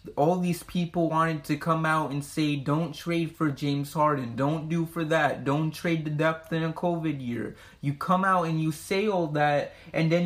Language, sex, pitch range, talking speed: English, male, 145-170 Hz, 210 wpm